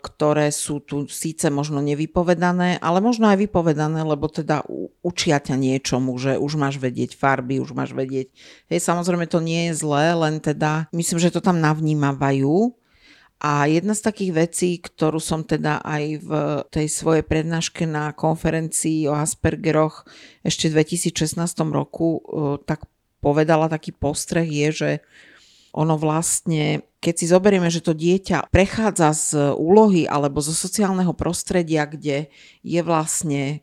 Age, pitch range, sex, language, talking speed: 50-69, 145-170 Hz, female, Slovak, 145 wpm